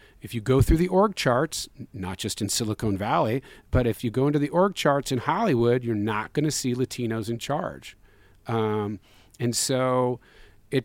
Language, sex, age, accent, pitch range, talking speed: English, male, 40-59, American, 115-140 Hz, 190 wpm